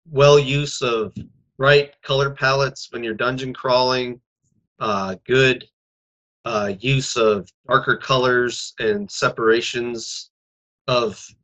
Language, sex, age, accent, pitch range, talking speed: English, male, 30-49, American, 110-140 Hz, 105 wpm